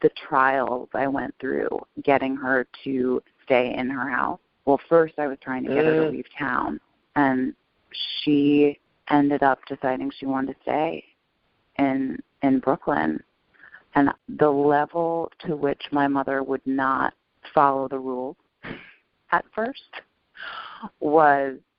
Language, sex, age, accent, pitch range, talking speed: English, female, 30-49, American, 140-225 Hz, 140 wpm